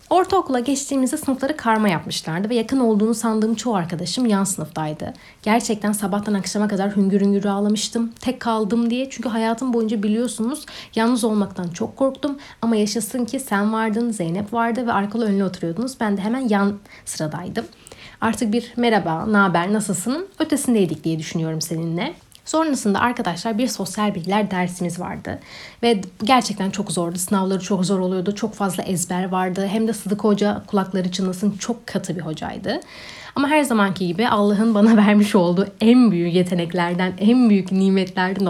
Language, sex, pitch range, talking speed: Turkish, female, 190-235 Hz, 155 wpm